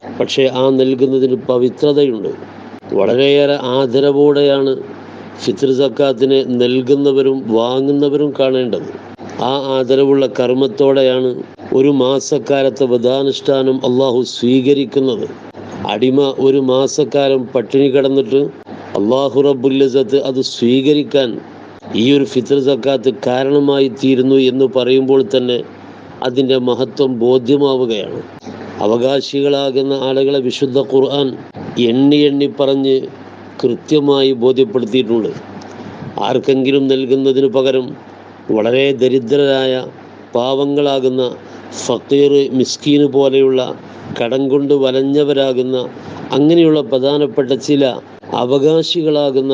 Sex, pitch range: male, 130-140 Hz